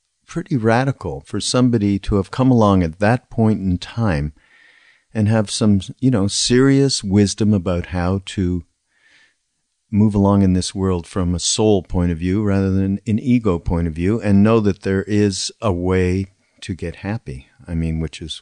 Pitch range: 90-110 Hz